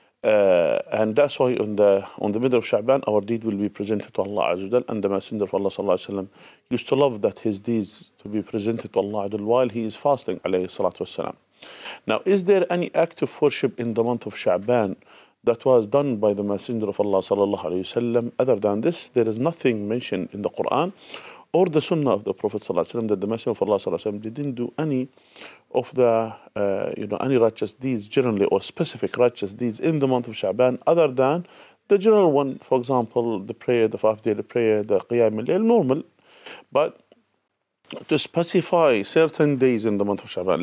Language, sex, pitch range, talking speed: English, male, 105-130 Hz, 195 wpm